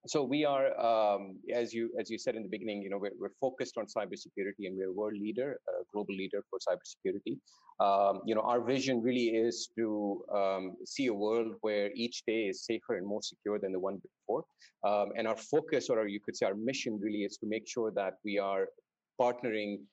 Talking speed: 220 wpm